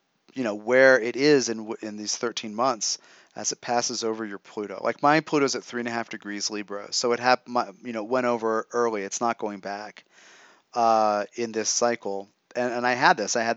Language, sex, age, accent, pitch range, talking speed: English, male, 30-49, American, 115-135 Hz, 220 wpm